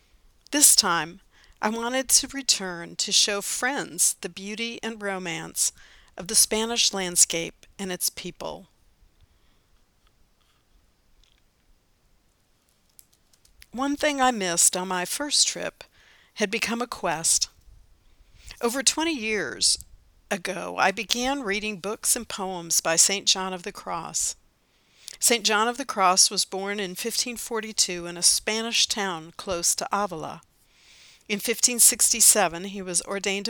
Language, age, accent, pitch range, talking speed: English, 50-69, American, 180-230 Hz, 125 wpm